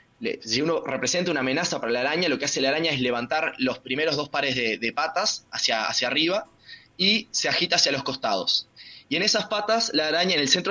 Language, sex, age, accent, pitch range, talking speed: Spanish, male, 20-39, Argentinian, 130-180 Hz, 225 wpm